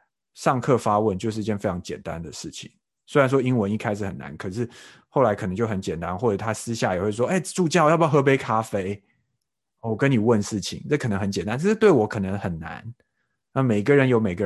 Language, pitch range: Chinese, 95-130 Hz